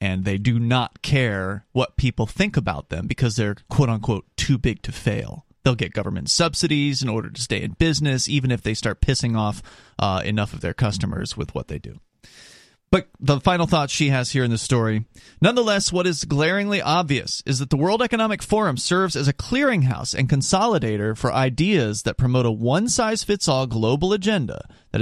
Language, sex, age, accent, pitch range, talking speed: English, male, 30-49, American, 115-155 Hz, 185 wpm